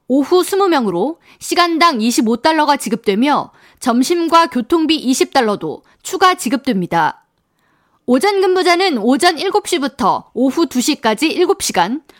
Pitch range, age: 255-345 Hz, 20-39